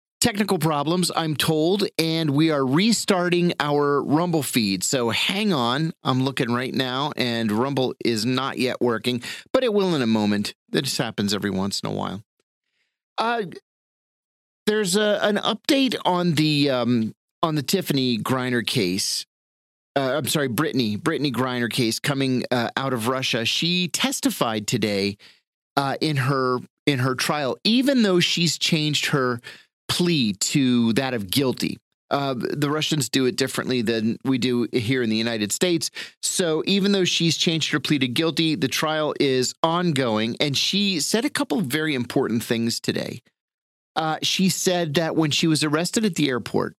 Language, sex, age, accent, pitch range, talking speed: English, male, 40-59, American, 120-170 Hz, 165 wpm